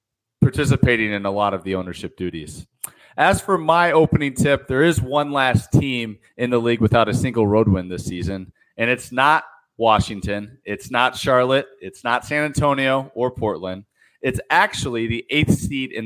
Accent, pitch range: American, 110-135 Hz